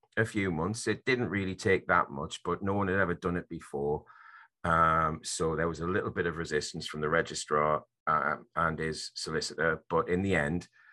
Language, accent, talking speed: English, British, 205 wpm